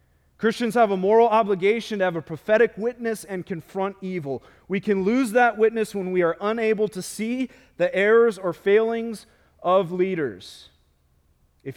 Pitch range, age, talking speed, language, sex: 120-195 Hz, 30-49, 160 wpm, English, male